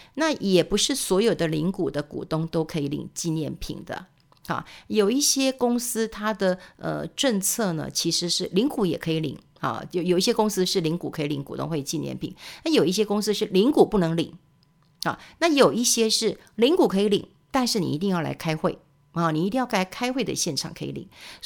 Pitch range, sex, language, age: 165-215 Hz, female, Chinese, 50-69